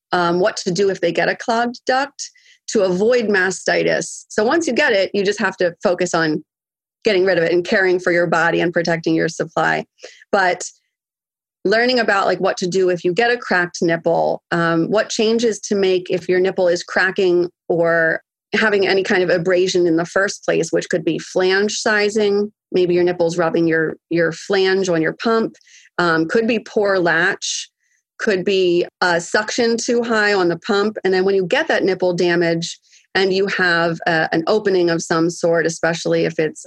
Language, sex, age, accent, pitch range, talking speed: English, female, 30-49, American, 170-210 Hz, 195 wpm